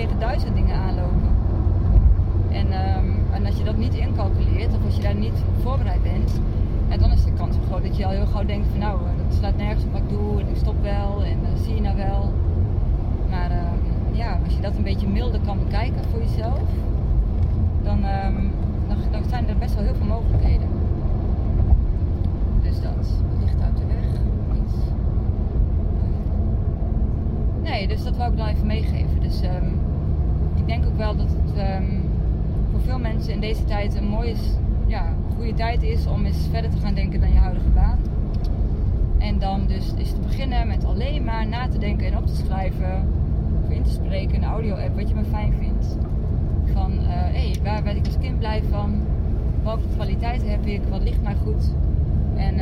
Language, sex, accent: Dutch, female, Dutch